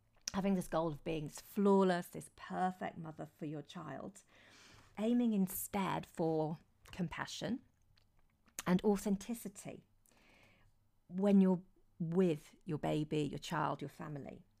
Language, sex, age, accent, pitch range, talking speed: English, female, 40-59, British, 145-195 Hz, 115 wpm